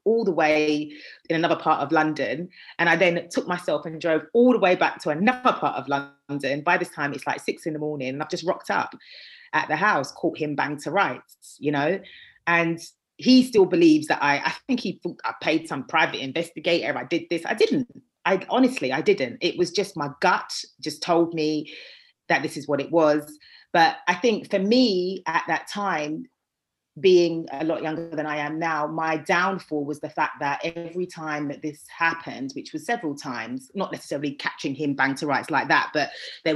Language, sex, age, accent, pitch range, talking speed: English, female, 30-49, British, 145-180 Hz, 210 wpm